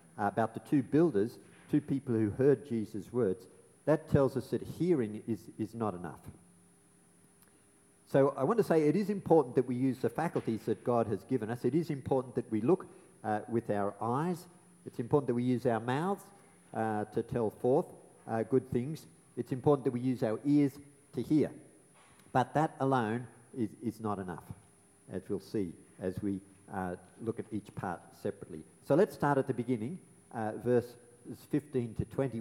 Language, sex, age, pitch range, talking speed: English, male, 50-69, 105-140 Hz, 185 wpm